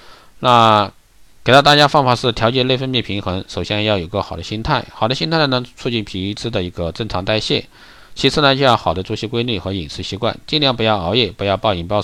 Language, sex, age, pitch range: Chinese, male, 50-69, 90-120 Hz